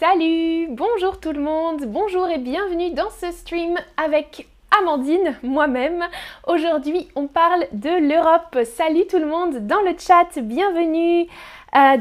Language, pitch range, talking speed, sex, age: French, 250-345 Hz, 140 wpm, female, 20-39